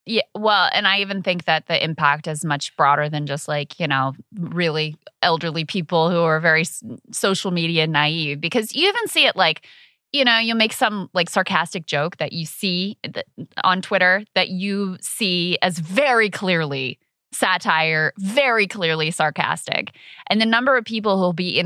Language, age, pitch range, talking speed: English, 20-39, 165-210 Hz, 175 wpm